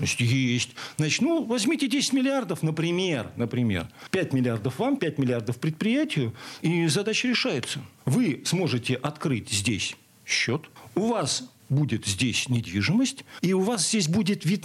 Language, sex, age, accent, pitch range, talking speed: Russian, male, 50-69, native, 125-210 Hz, 135 wpm